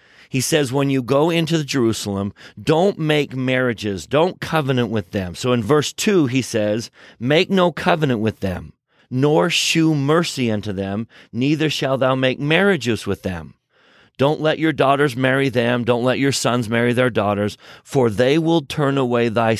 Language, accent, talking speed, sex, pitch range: English, American, 170 wpm, male, 105-140 Hz